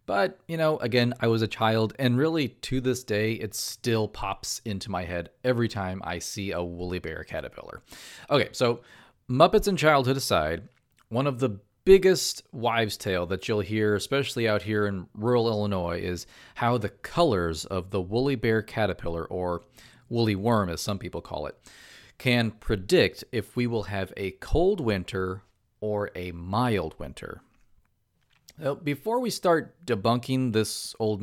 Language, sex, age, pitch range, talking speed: English, male, 40-59, 100-130 Hz, 160 wpm